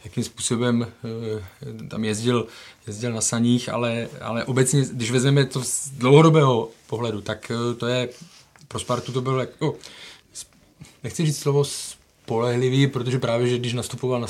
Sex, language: male, Czech